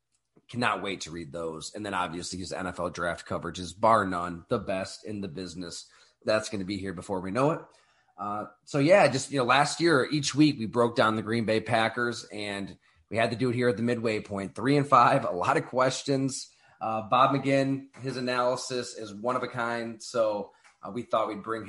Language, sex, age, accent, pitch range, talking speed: English, male, 30-49, American, 105-125 Hz, 220 wpm